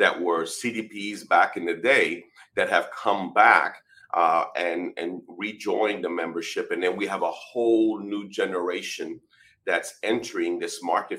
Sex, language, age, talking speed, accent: male, English, 40-59, 155 wpm, American